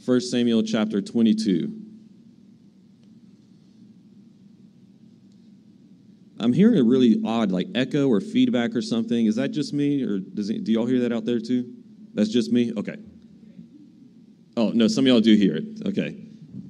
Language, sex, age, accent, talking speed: English, male, 40-59, American, 150 wpm